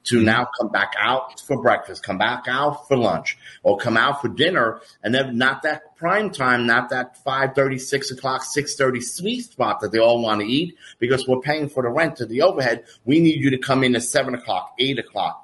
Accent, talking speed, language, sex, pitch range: American, 220 wpm, English, male, 110-130 Hz